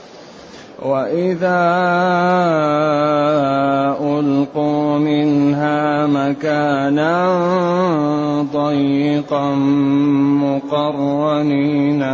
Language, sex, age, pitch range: Arabic, male, 30-49, 140-150 Hz